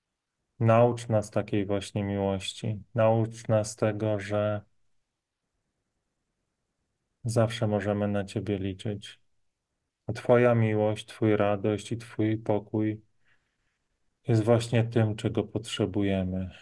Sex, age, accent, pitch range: male, 30-49, native, 100-115 Hz